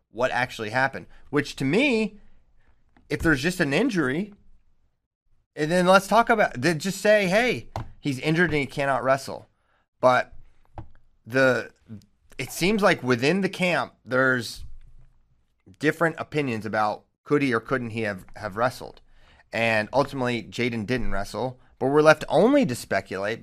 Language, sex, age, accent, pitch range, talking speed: English, male, 30-49, American, 110-130 Hz, 145 wpm